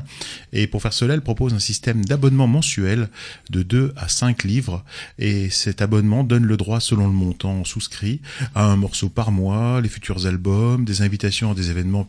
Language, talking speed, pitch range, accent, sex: French, 190 wpm, 100-125 Hz, French, male